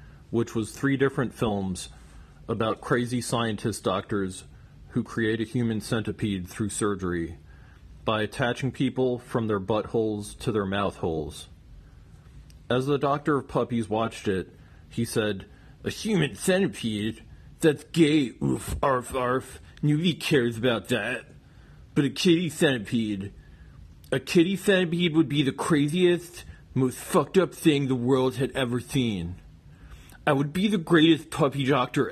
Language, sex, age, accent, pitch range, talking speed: English, male, 40-59, American, 105-145 Hz, 135 wpm